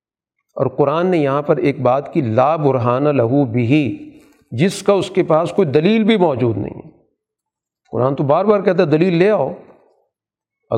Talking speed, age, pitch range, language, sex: 175 wpm, 40-59, 135-180 Hz, Urdu, male